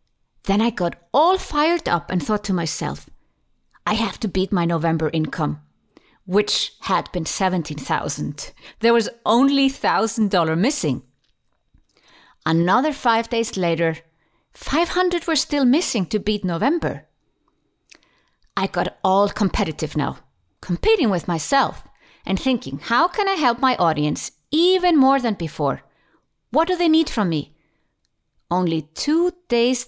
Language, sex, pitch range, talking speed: English, female, 165-245 Hz, 135 wpm